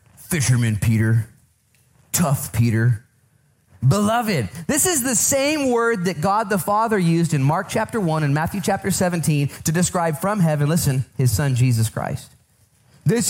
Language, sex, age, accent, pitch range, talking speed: English, male, 30-49, American, 110-170 Hz, 150 wpm